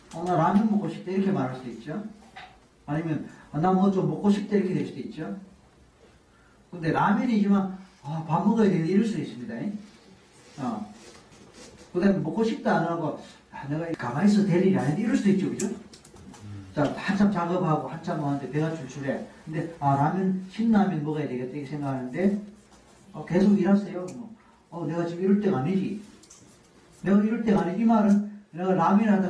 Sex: male